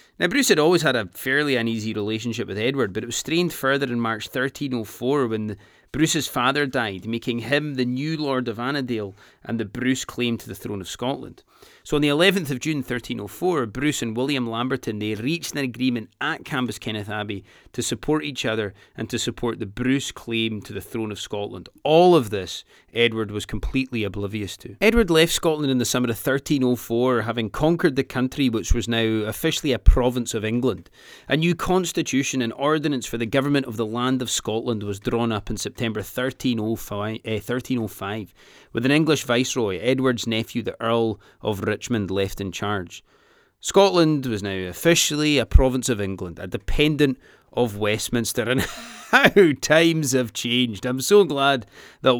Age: 30-49